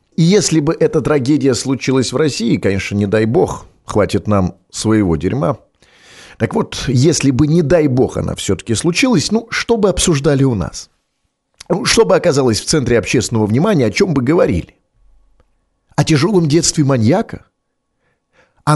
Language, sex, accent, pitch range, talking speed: Russian, male, native, 120-170 Hz, 150 wpm